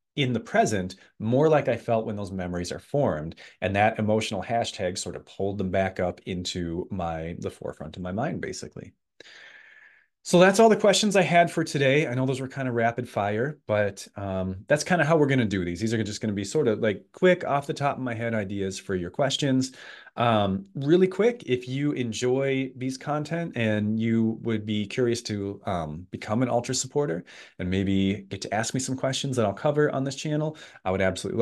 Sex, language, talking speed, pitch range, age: male, English, 215 wpm, 95-130 Hz, 30-49